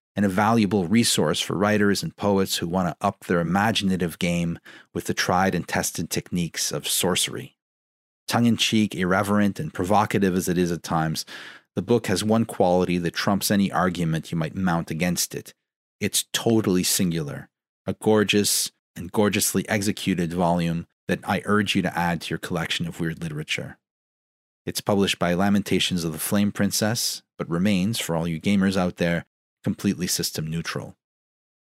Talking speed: 165 wpm